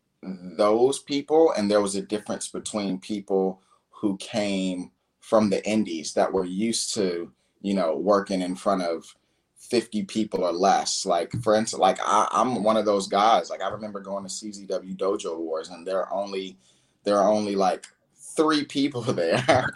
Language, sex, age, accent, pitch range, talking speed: English, male, 20-39, American, 95-110 Hz, 170 wpm